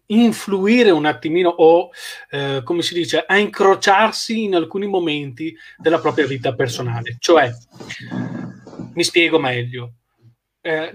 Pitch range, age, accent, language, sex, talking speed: 150-220 Hz, 30-49, native, Italian, male, 120 wpm